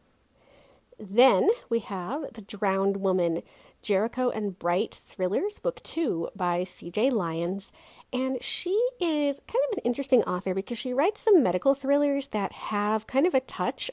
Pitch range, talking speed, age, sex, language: 185-255 Hz, 150 wpm, 40-59, female, English